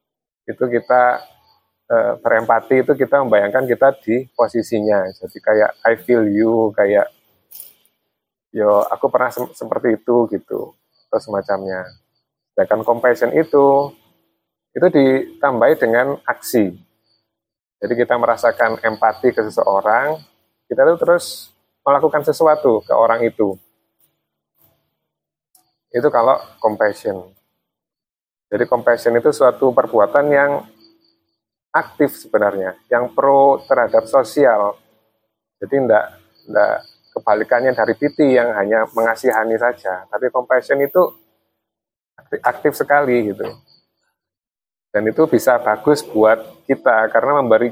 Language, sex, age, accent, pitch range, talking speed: Indonesian, male, 30-49, native, 110-135 Hz, 110 wpm